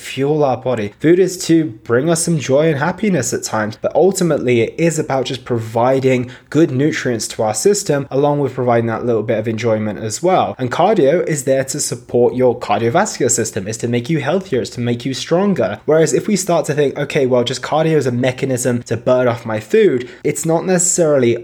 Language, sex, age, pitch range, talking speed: English, male, 20-39, 115-145 Hz, 215 wpm